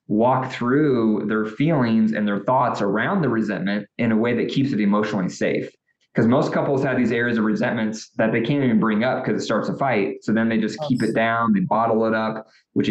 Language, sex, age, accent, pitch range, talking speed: English, male, 20-39, American, 110-125 Hz, 230 wpm